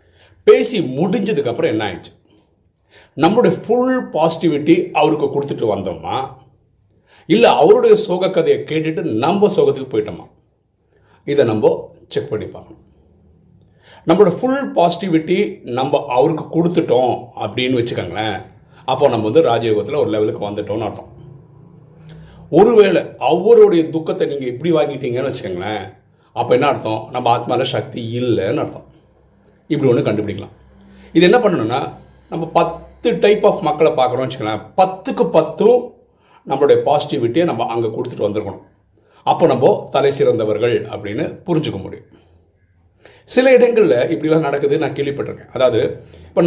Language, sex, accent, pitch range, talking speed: Tamil, male, native, 115-195 Hz, 115 wpm